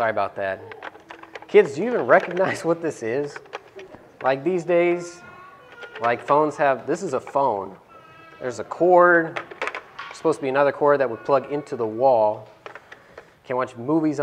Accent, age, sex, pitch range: American, 30-49, male, 120-175 Hz